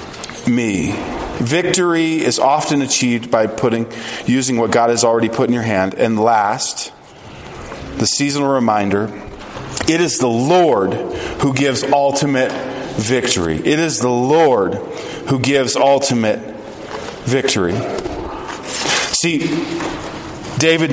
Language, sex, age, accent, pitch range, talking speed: English, male, 40-59, American, 135-175 Hz, 110 wpm